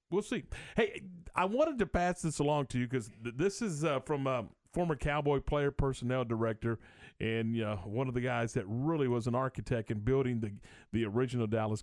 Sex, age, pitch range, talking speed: male, 40-59, 115-150 Hz, 205 wpm